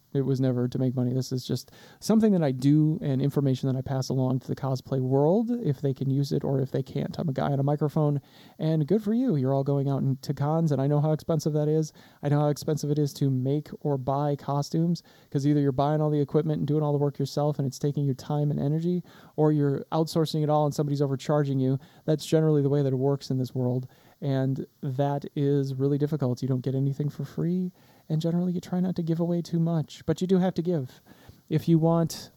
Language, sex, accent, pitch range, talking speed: English, male, American, 135-155 Hz, 250 wpm